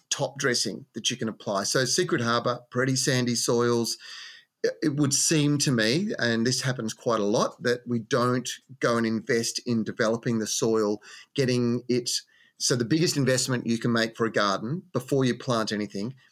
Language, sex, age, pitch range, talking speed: English, male, 30-49, 110-130 Hz, 180 wpm